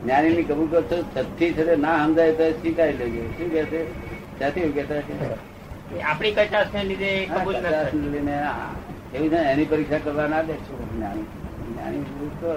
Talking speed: 85 wpm